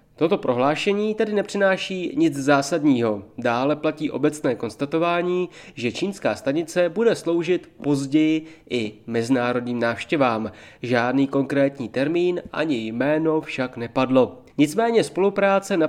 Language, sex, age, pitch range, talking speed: Czech, male, 30-49, 130-175 Hz, 110 wpm